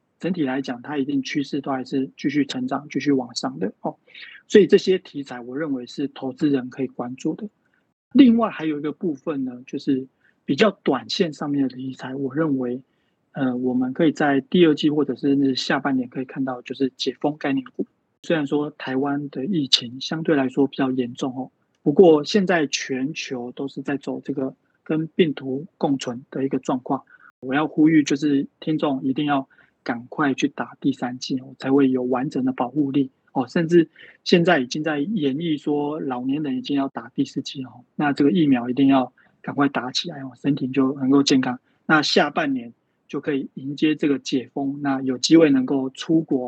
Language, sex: Chinese, male